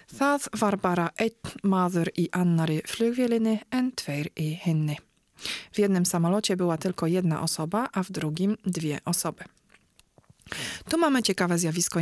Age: 40-59